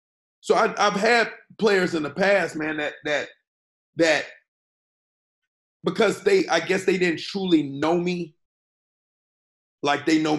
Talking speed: 140 wpm